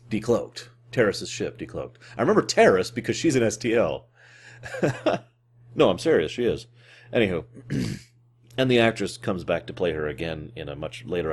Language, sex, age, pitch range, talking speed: English, male, 30-49, 95-120 Hz, 160 wpm